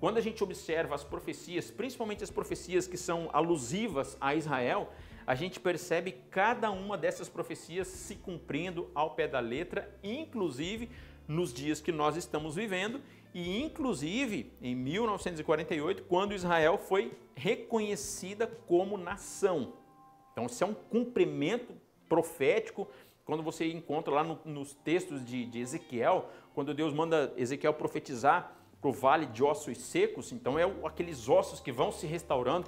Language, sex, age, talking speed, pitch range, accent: Portuguese, male, 50-69, 145 wpm, 145-185 Hz, Brazilian